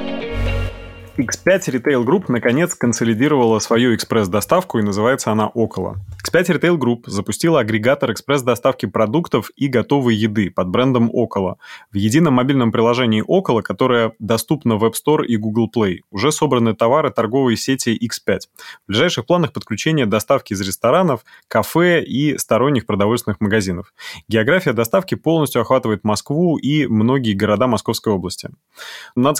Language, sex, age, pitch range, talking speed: Russian, male, 20-39, 105-125 Hz, 135 wpm